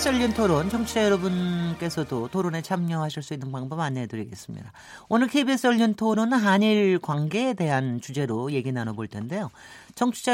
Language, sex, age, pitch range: Korean, male, 40-59, 135-205 Hz